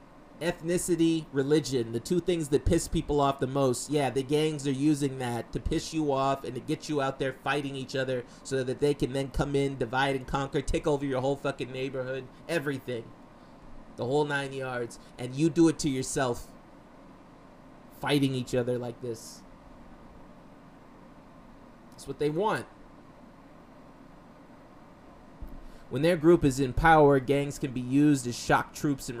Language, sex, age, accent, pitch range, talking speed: English, male, 30-49, American, 130-155 Hz, 165 wpm